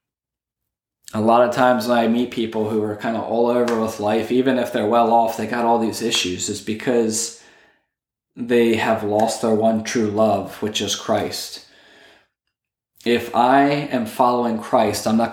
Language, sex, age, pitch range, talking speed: English, male, 20-39, 110-125 Hz, 175 wpm